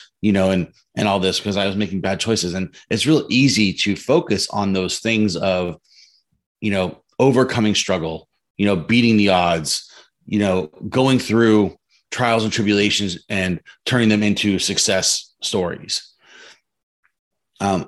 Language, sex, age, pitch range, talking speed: English, male, 30-49, 95-105 Hz, 150 wpm